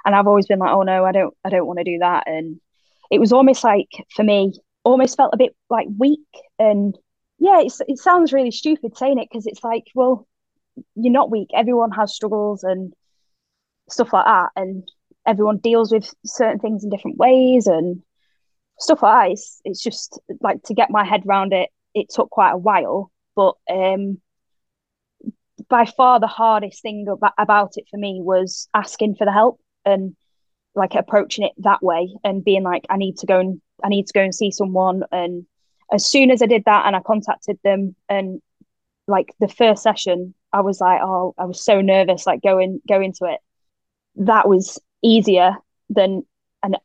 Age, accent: 10-29, British